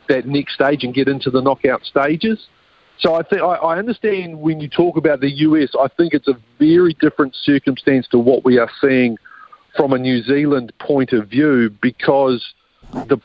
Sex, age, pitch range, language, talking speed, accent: male, 50-69, 130-170 Hz, English, 185 wpm, Australian